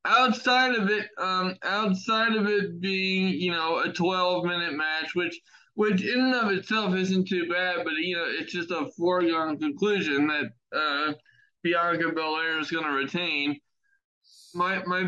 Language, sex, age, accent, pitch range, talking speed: English, male, 20-39, American, 165-200 Hz, 160 wpm